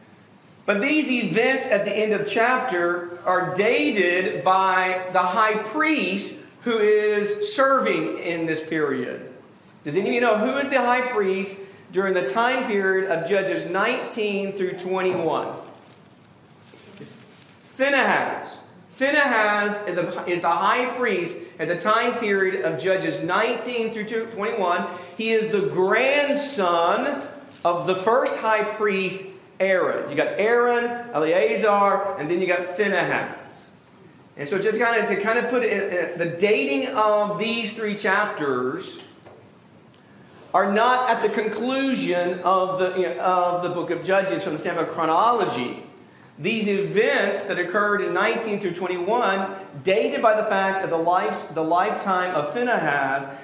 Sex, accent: male, American